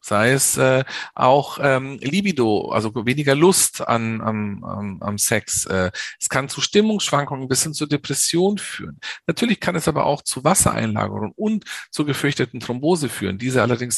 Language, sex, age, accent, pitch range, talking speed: German, male, 40-59, German, 110-160 Hz, 165 wpm